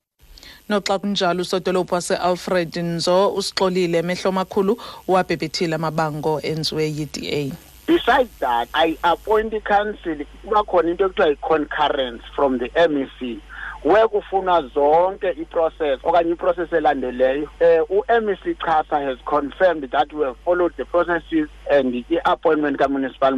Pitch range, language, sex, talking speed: 160-185 Hz, English, male, 150 wpm